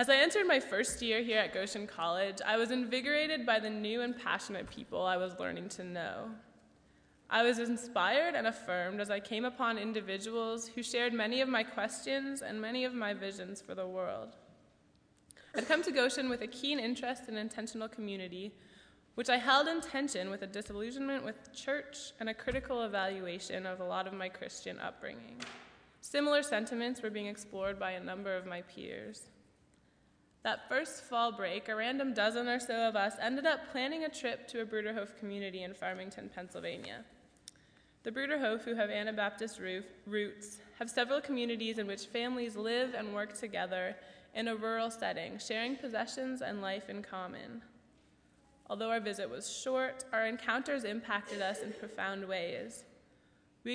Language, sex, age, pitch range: English, female, 20-39, 205-250 Hz